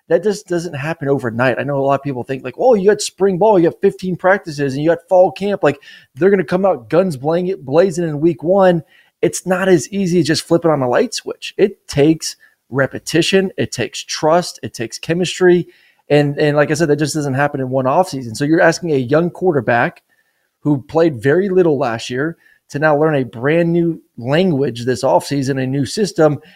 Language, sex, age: English, male, 20-39